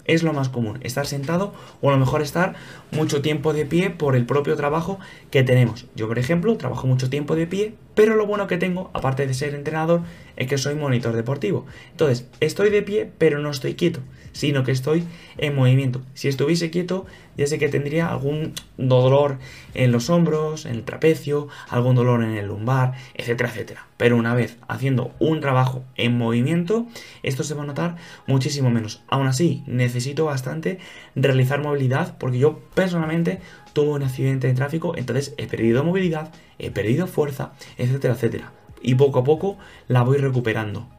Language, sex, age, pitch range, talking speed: Spanish, male, 20-39, 125-160 Hz, 180 wpm